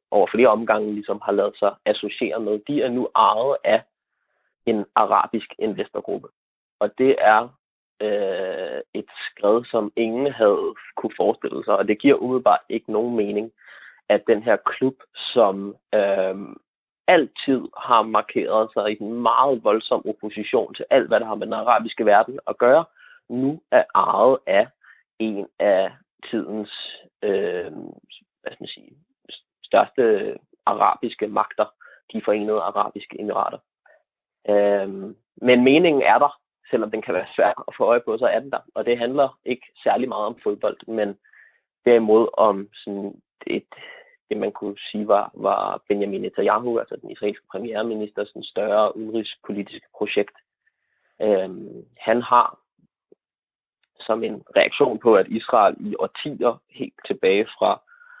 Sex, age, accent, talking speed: male, 30-49, native, 145 wpm